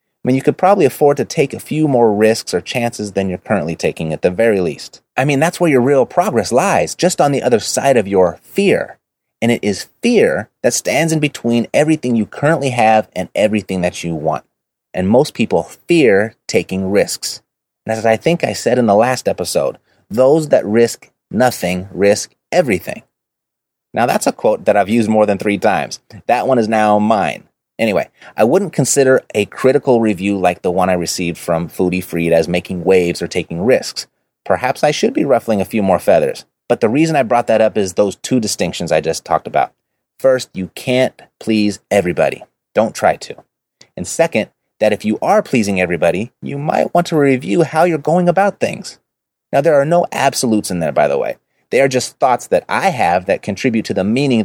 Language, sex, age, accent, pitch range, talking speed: English, male, 30-49, American, 95-140 Hz, 205 wpm